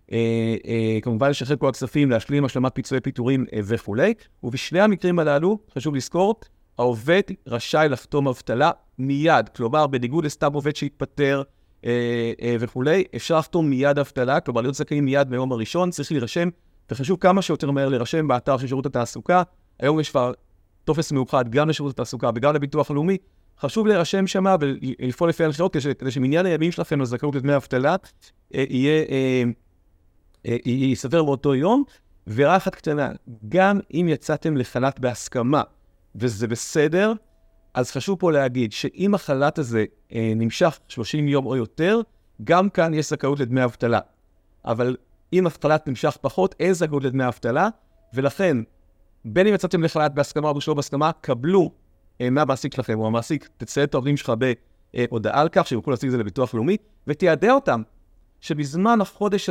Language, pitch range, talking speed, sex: Hebrew, 120-160 Hz, 145 wpm, male